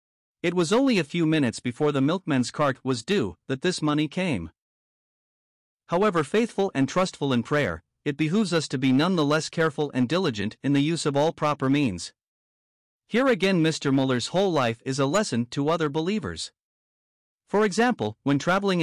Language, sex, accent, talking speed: English, male, American, 170 wpm